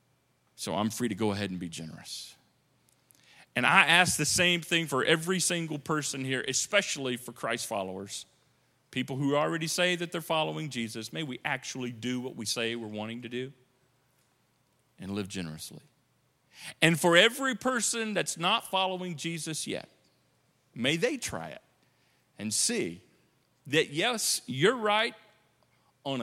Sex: male